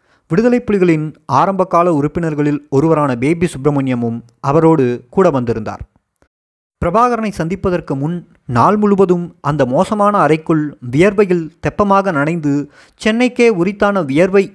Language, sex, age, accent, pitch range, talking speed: Tamil, male, 30-49, native, 140-190 Hz, 105 wpm